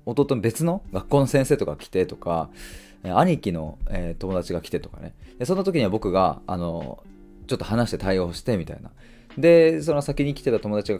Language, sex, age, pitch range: Japanese, male, 20-39, 85-120 Hz